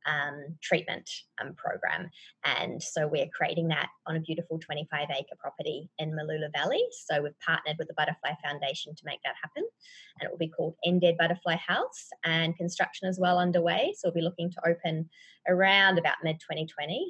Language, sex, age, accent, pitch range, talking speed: English, female, 20-39, Australian, 160-180 Hz, 185 wpm